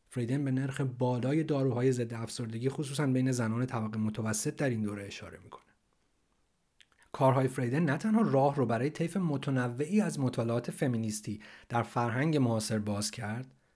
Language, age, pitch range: Persian, 30-49, 110-145 Hz